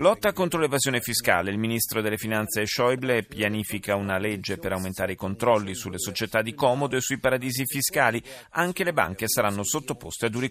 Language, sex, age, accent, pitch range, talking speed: Italian, male, 30-49, native, 105-145 Hz, 175 wpm